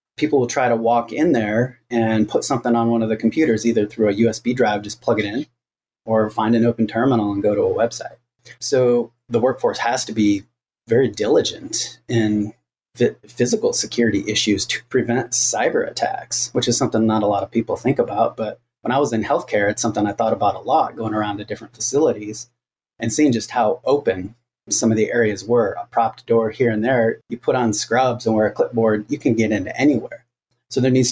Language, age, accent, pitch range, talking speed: English, 30-49, American, 110-125 Hz, 215 wpm